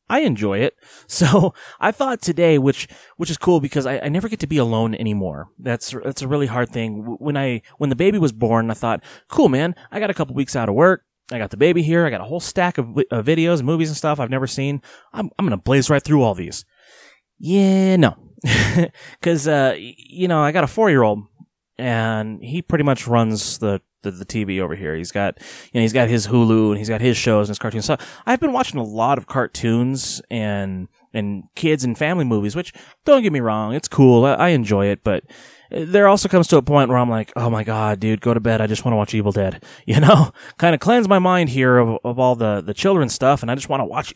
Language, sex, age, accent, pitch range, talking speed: English, male, 30-49, American, 110-160 Hz, 245 wpm